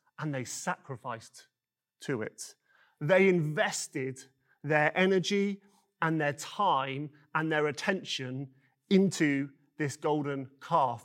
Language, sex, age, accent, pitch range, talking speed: English, male, 30-49, British, 135-170 Hz, 105 wpm